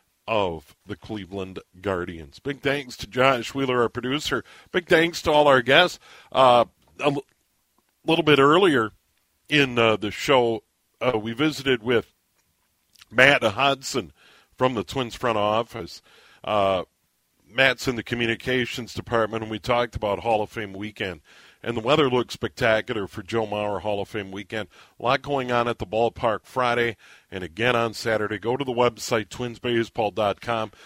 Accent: American